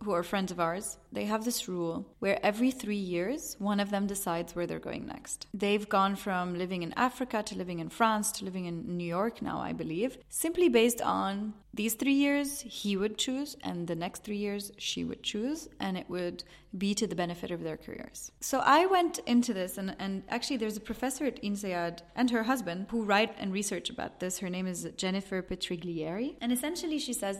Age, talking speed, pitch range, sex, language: 30-49, 210 wpm, 185-245 Hz, female, English